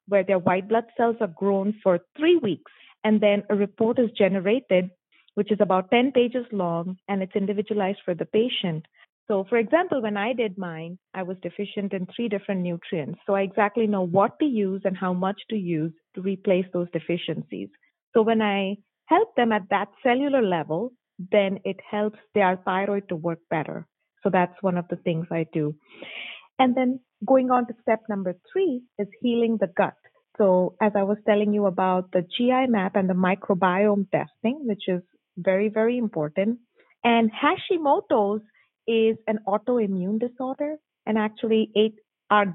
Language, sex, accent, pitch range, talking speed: English, female, Indian, 185-230 Hz, 175 wpm